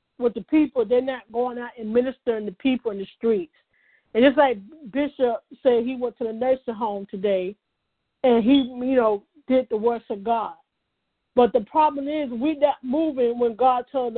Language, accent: English, American